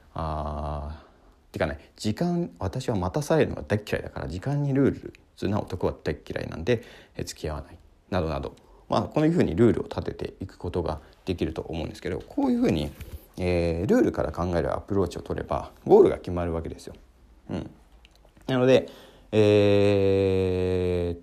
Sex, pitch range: male, 85-115 Hz